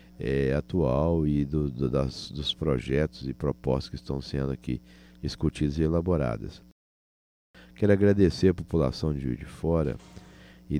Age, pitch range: 60-79, 70-95 Hz